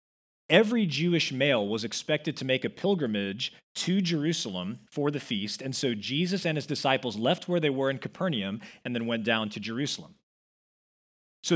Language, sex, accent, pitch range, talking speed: English, male, American, 115-165 Hz, 170 wpm